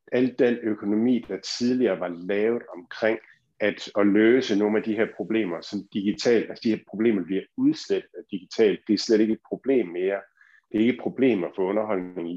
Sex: male